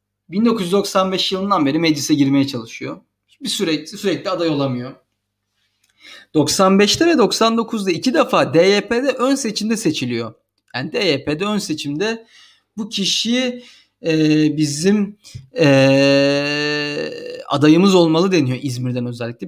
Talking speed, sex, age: 105 wpm, male, 40-59